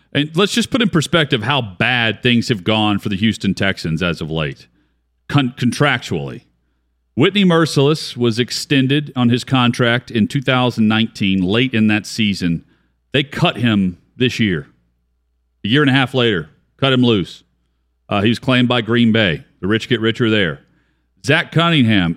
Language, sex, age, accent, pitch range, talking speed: English, male, 40-59, American, 90-145 Hz, 165 wpm